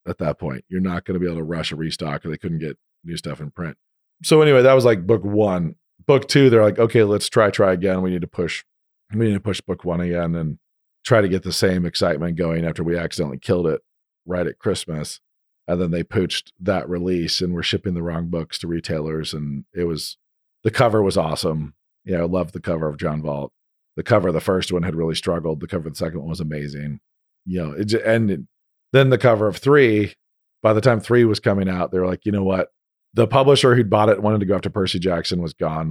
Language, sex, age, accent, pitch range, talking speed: English, male, 40-59, American, 85-105 Hz, 245 wpm